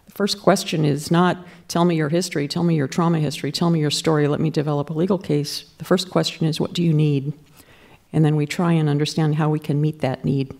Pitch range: 145-170 Hz